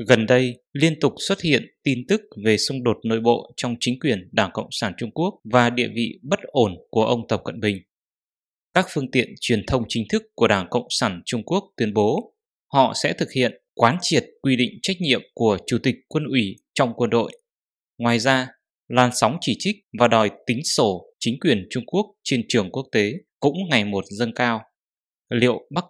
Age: 20-39